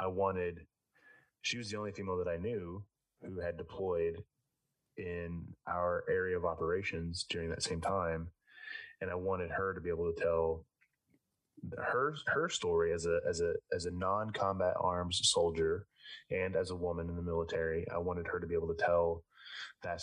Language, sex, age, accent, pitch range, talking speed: English, male, 20-39, American, 85-135 Hz, 175 wpm